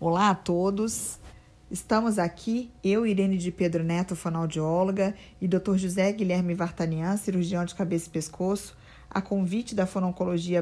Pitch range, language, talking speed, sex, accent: 175-210 Hz, Portuguese, 140 wpm, female, Brazilian